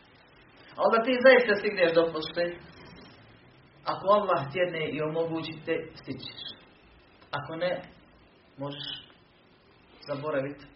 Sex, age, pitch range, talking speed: male, 40-59, 135-180 Hz, 100 wpm